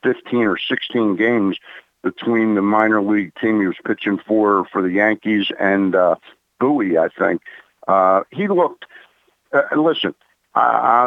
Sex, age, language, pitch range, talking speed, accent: male, 60-79, English, 100-115 Hz, 145 wpm, American